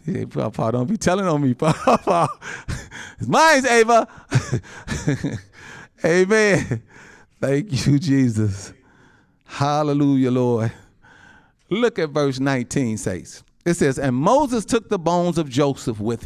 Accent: American